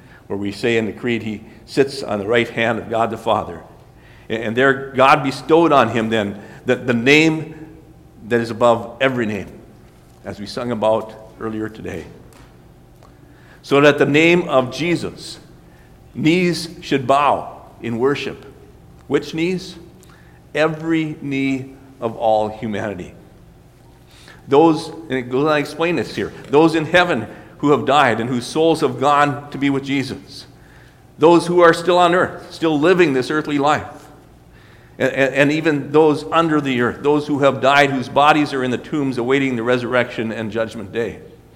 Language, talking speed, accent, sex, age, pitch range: English, 165 wpm, American, male, 50-69, 110-150 Hz